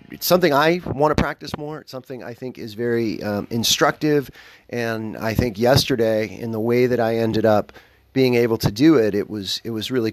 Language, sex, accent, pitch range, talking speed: English, male, American, 105-140 Hz, 215 wpm